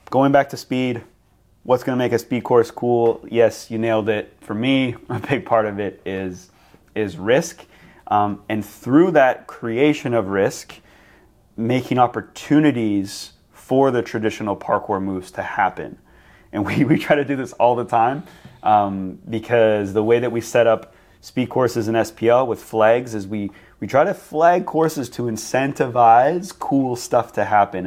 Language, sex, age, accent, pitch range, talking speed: English, male, 30-49, American, 105-125 Hz, 170 wpm